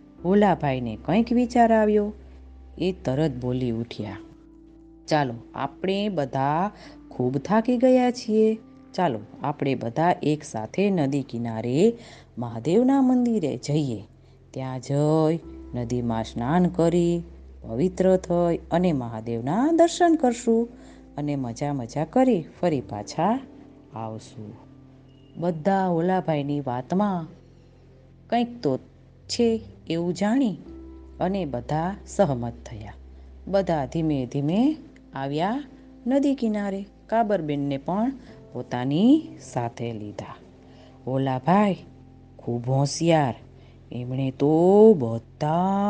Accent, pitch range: native, 130-200 Hz